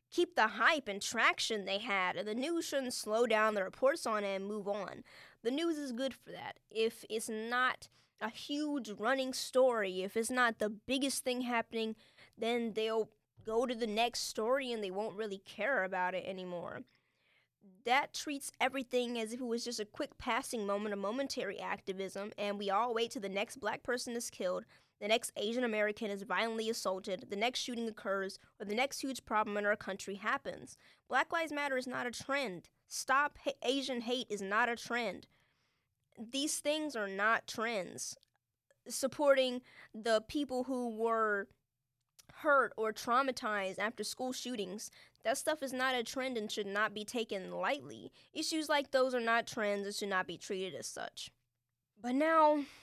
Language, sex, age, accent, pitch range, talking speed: English, female, 20-39, American, 205-260 Hz, 180 wpm